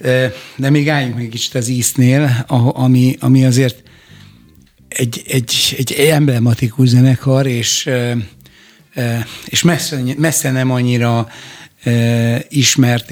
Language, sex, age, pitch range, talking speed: Hungarian, male, 60-79, 120-135 Hz, 100 wpm